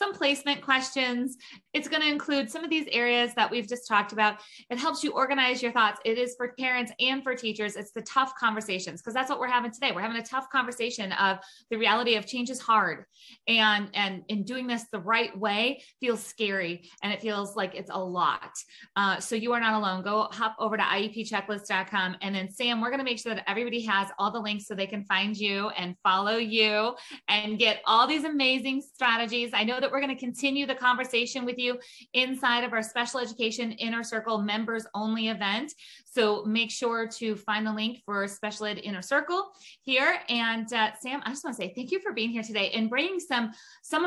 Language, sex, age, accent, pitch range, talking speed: English, female, 20-39, American, 210-255 Hz, 215 wpm